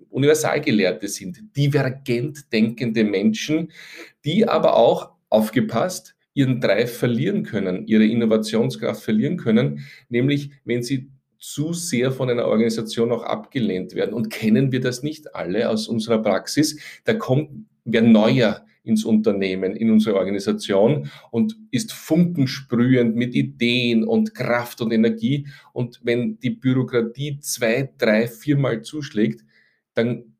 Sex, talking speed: male, 125 wpm